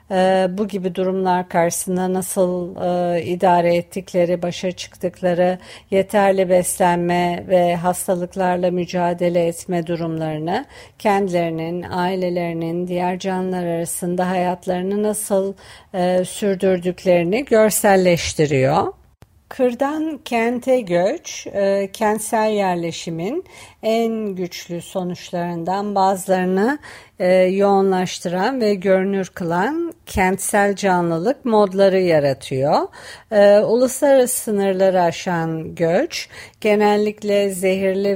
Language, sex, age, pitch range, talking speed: Turkish, female, 50-69, 175-205 Hz, 85 wpm